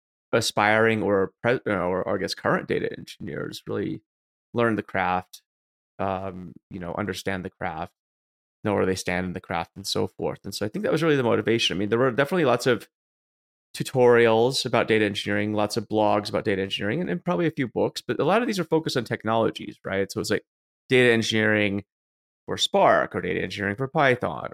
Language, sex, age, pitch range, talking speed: English, male, 30-49, 95-115 Hz, 210 wpm